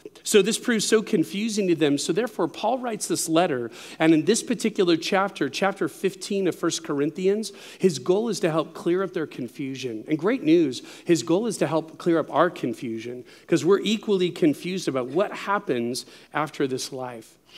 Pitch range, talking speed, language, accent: 160-215 Hz, 185 wpm, English, American